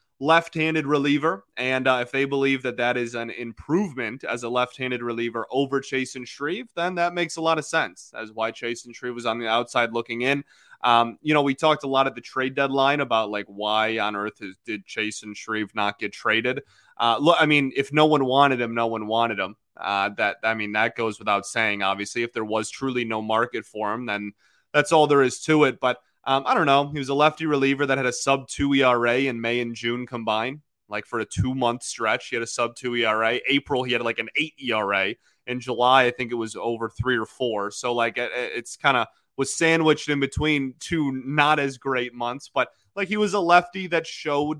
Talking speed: 225 wpm